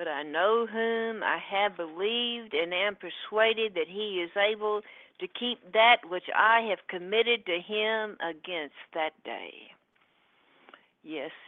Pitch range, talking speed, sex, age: 180-225 Hz, 140 wpm, female, 60-79